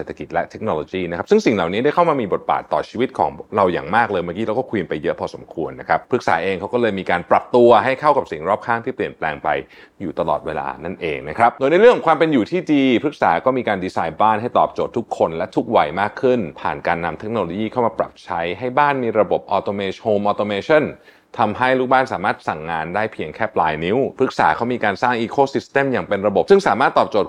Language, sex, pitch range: Thai, male, 100-135 Hz